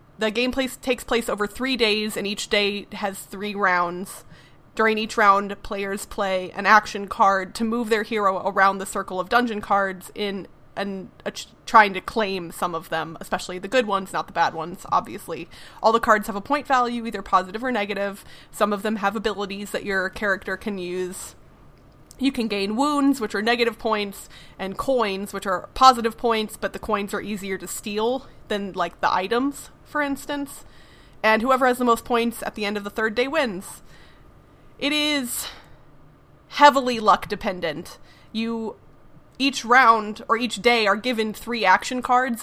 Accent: American